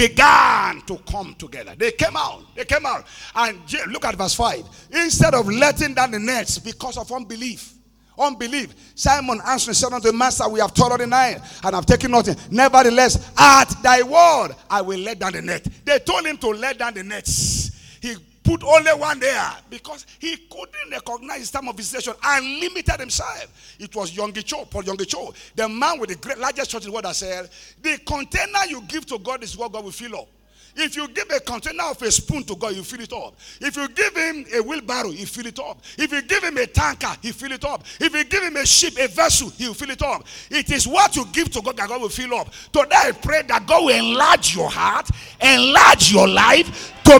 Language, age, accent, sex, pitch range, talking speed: English, 50-69, Nigerian, male, 220-290 Hz, 220 wpm